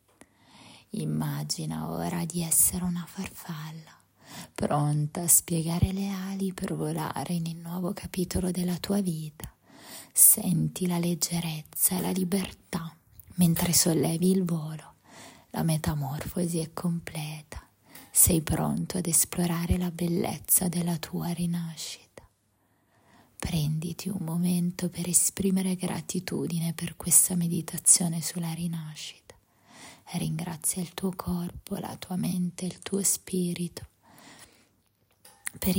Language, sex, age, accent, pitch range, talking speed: Italian, female, 20-39, native, 165-185 Hz, 110 wpm